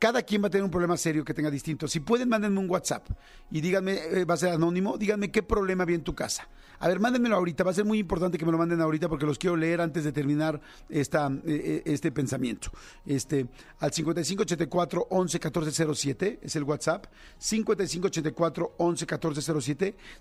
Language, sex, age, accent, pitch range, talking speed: Spanish, male, 50-69, Mexican, 145-180 Hz, 185 wpm